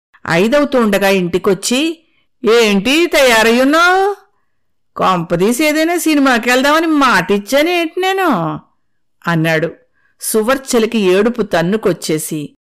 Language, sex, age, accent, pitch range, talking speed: Telugu, female, 50-69, native, 200-315 Hz, 65 wpm